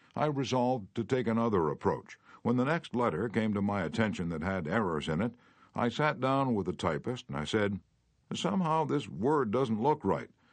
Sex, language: male, English